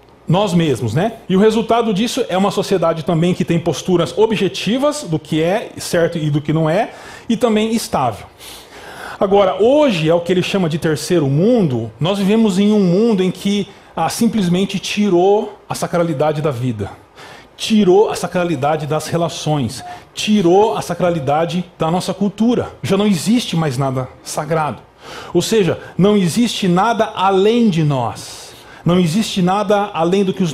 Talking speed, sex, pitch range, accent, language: 165 wpm, male, 155-205 Hz, Brazilian, Portuguese